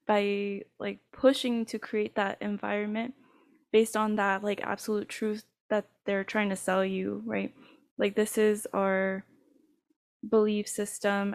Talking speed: 135 wpm